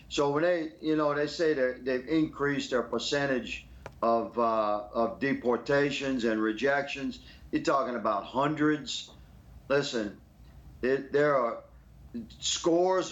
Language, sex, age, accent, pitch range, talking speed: English, male, 50-69, American, 115-155 Hz, 120 wpm